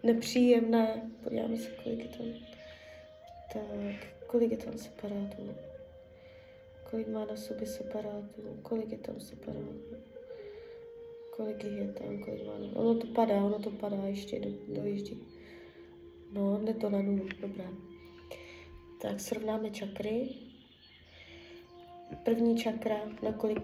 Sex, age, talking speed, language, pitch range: female, 20-39, 125 wpm, Czech, 190-235 Hz